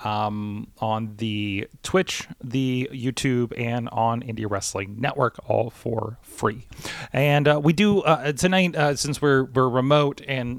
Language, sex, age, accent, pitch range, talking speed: English, male, 30-49, American, 115-155 Hz, 145 wpm